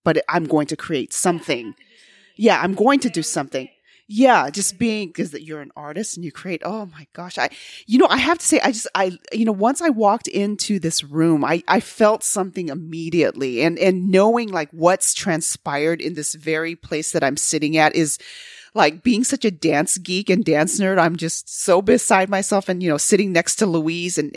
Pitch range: 160-230 Hz